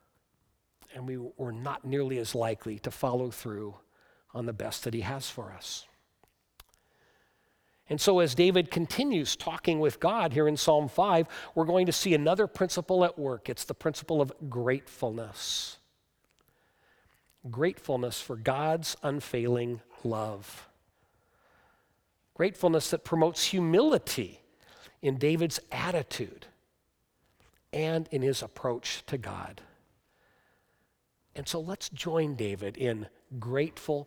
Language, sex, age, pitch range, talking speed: English, male, 50-69, 120-180 Hz, 120 wpm